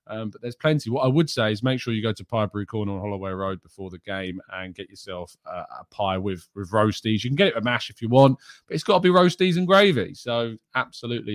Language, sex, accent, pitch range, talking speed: English, male, British, 100-145 Hz, 265 wpm